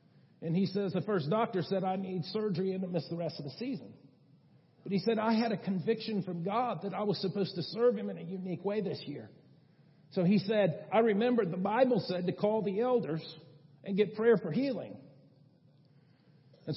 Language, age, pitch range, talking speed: English, 50-69, 170-225 Hz, 210 wpm